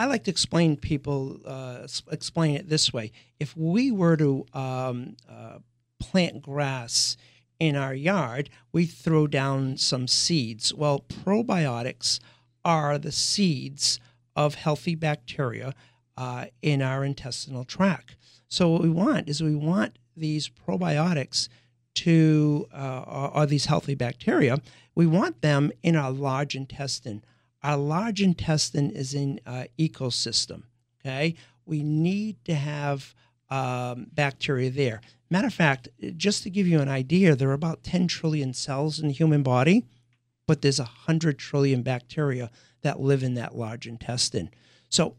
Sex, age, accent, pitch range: male, 50-69, American, 125-160 Hz